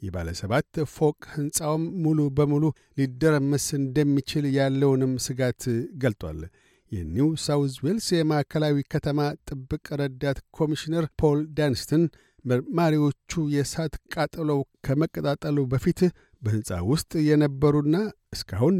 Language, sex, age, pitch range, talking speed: Amharic, male, 60-79, 135-155 Hz, 95 wpm